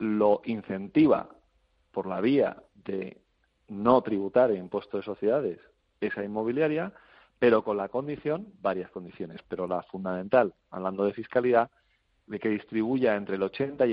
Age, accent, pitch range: 40-59, Spanish, 95-120 Hz